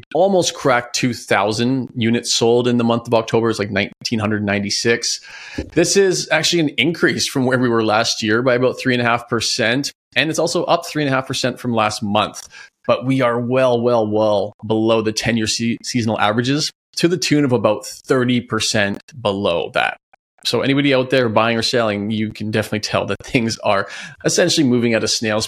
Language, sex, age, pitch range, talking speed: English, male, 30-49, 110-130 Hz, 195 wpm